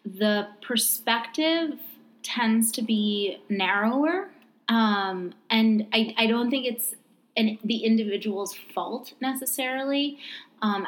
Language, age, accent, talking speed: English, 20-39, American, 100 wpm